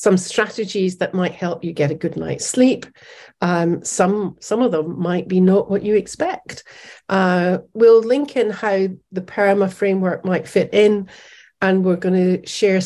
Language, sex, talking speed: English, female, 175 wpm